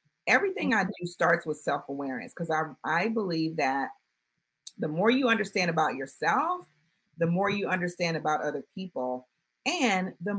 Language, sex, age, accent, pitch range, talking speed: English, female, 40-59, American, 165-225 Hz, 150 wpm